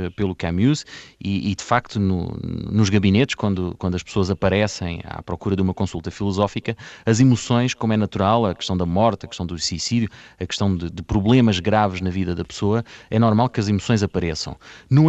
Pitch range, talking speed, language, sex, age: 100-135 Hz, 200 wpm, Portuguese, male, 30-49